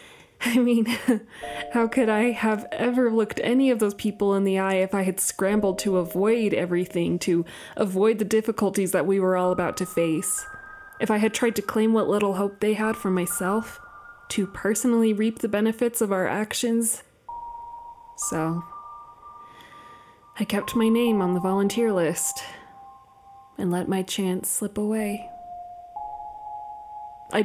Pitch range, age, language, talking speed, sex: 185-250 Hz, 20-39, English, 155 wpm, female